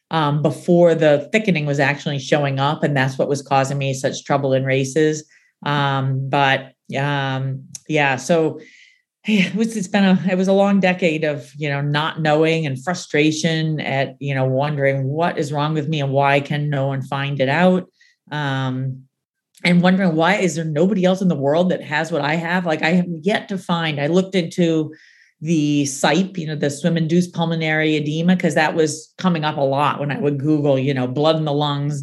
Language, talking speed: English, 205 wpm